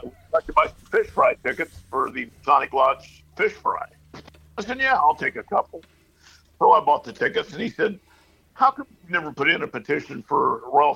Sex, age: male, 50-69